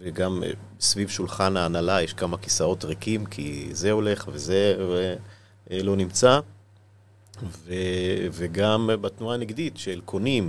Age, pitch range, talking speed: 30-49, 95-110 Hz, 110 wpm